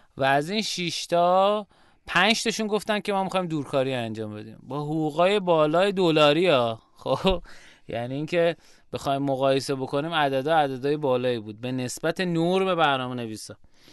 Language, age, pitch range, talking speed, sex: Persian, 30-49, 125-165 Hz, 135 wpm, male